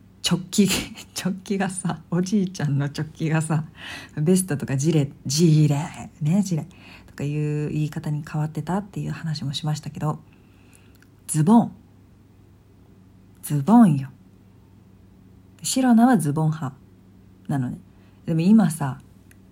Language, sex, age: Japanese, female, 40-59